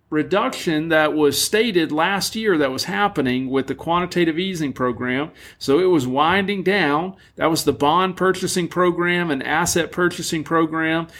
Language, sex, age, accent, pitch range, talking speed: English, male, 50-69, American, 145-195 Hz, 155 wpm